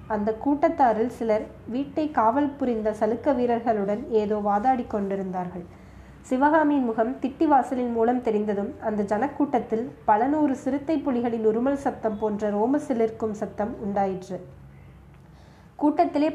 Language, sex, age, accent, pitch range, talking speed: Tamil, female, 20-39, native, 215-270 Hz, 115 wpm